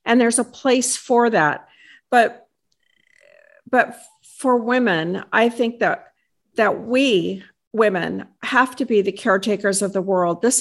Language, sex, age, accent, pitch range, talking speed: English, female, 50-69, American, 210-265 Hz, 140 wpm